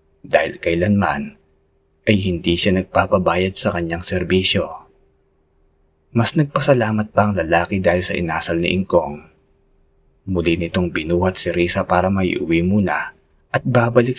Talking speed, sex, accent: 125 wpm, male, native